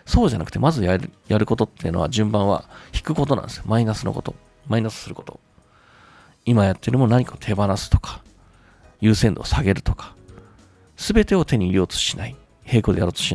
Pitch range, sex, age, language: 105-155 Hz, male, 40-59, Japanese